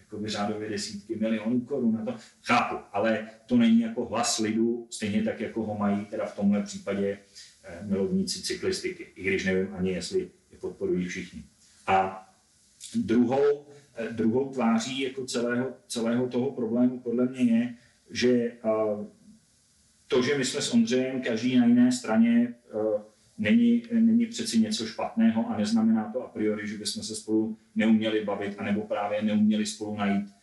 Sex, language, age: male, Czech, 40-59